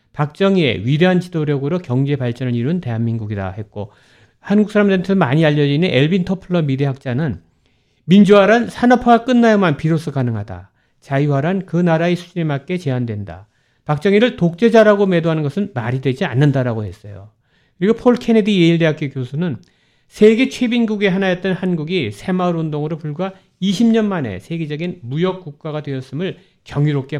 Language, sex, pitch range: Korean, male, 130-190 Hz